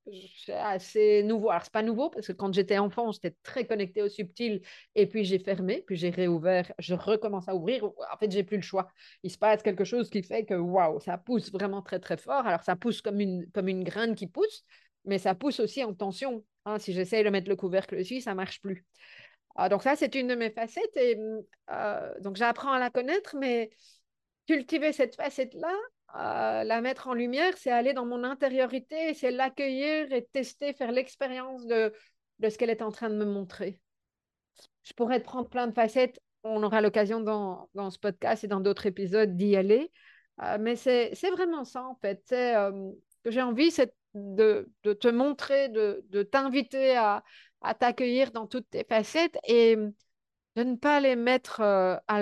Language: French